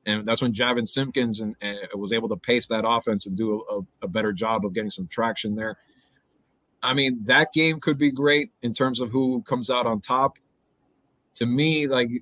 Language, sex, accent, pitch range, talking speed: English, male, American, 110-130 Hz, 195 wpm